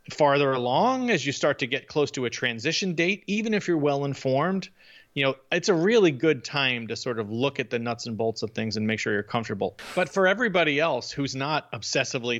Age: 40-59